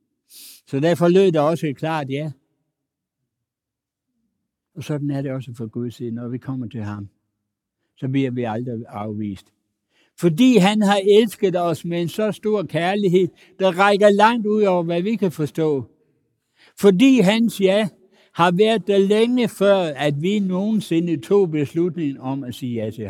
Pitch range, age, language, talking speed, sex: 140-210 Hz, 60-79, Danish, 160 wpm, male